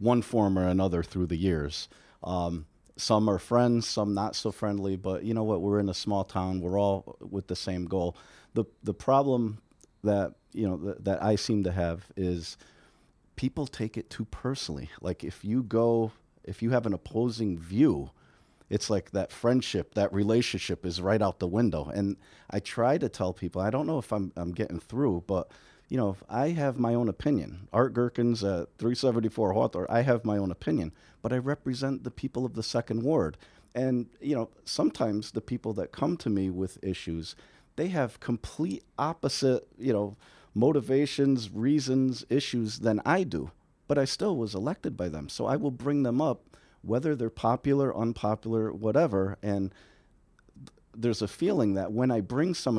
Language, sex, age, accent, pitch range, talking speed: English, male, 40-59, American, 95-120 Hz, 185 wpm